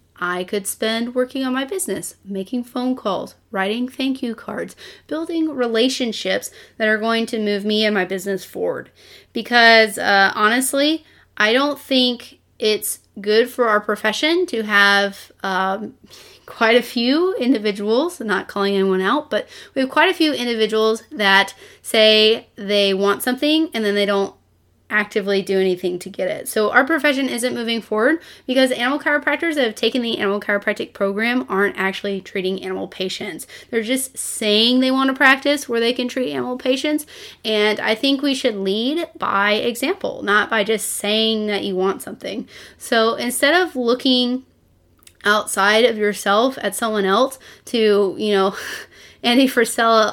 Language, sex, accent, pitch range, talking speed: English, female, American, 205-255 Hz, 160 wpm